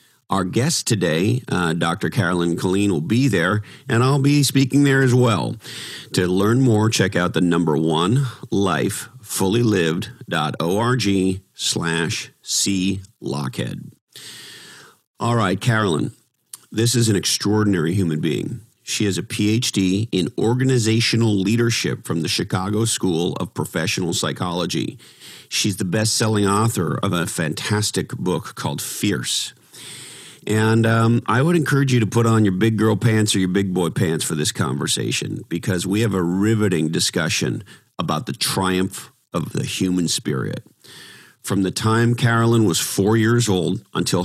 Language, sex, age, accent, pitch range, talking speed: English, male, 50-69, American, 95-115 Hz, 140 wpm